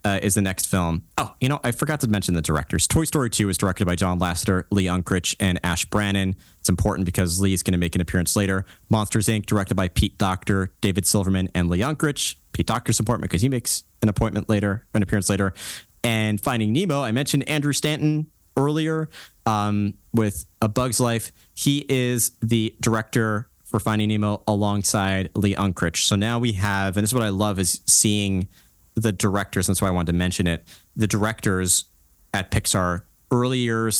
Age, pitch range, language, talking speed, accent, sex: 30-49, 90-110 Hz, English, 195 wpm, American, male